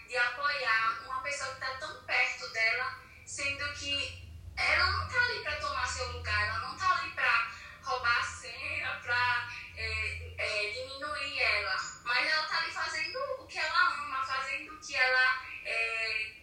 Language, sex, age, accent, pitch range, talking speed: Portuguese, female, 10-29, Brazilian, 245-295 Hz, 160 wpm